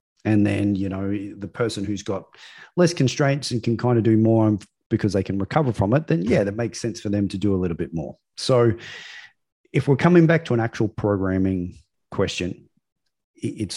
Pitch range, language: 95-115 Hz, English